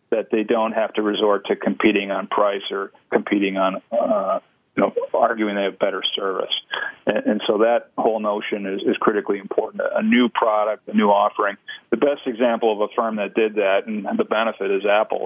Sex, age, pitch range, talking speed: male, 40-59, 100-135 Hz, 200 wpm